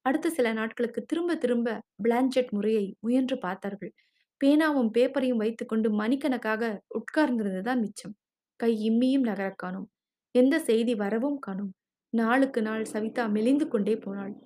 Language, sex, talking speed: Tamil, female, 115 wpm